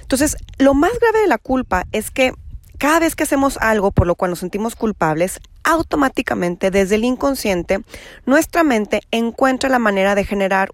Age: 30-49